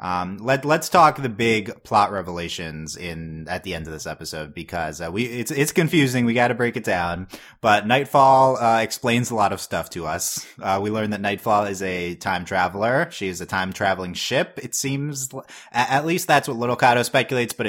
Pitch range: 90-120 Hz